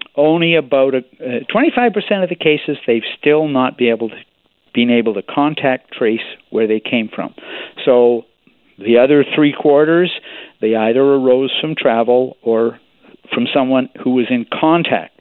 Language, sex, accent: English, male, American